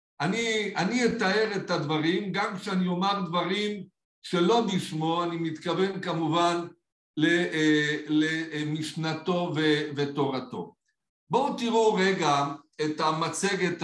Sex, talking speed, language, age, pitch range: male, 90 wpm, Hebrew, 60-79, 160-220 Hz